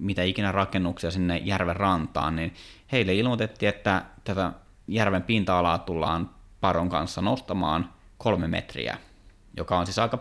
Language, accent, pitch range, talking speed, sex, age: Finnish, native, 90-105 Hz, 135 wpm, male, 30-49